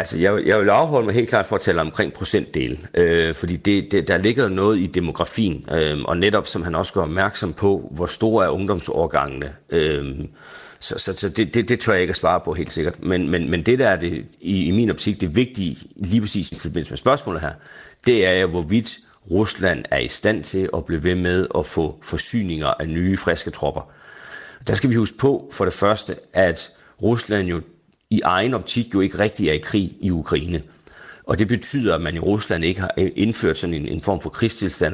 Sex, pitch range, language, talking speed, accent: male, 85-100 Hz, Danish, 220 wpm, native